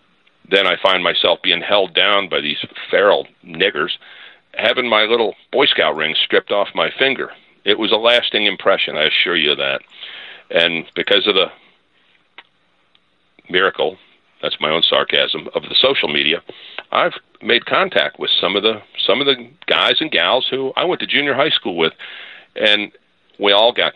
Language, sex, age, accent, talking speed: English, male, 50-69, American, 170 wpm